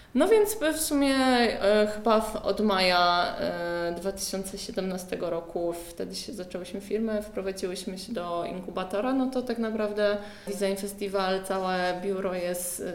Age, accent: 20-39, native